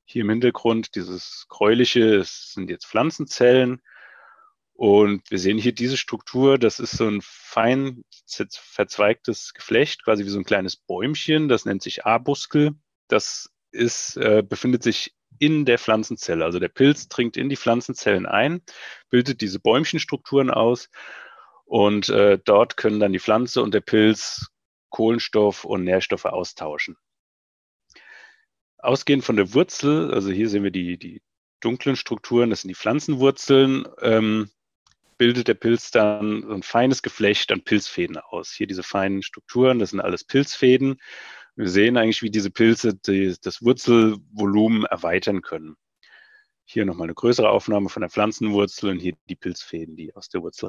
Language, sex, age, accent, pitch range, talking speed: German, male, 30-49, German, 105-130 Hz, 150 wpm